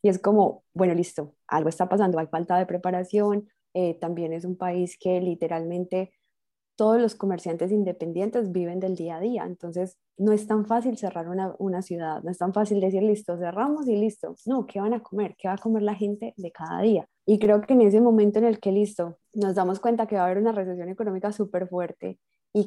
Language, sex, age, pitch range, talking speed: Spanish, female, 20-39, 180-210 Hz, 220 wpm